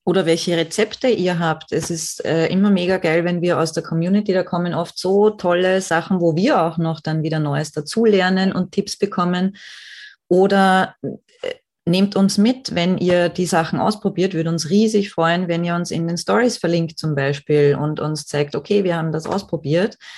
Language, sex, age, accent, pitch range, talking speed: German, female, 20-39, German, 160-195 Hz, 185 wpm